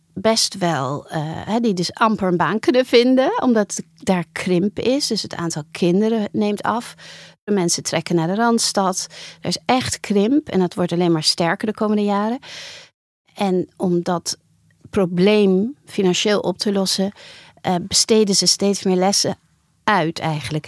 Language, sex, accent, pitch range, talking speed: Dutch, female, Dutch, 175-215 Hz, 160 wpm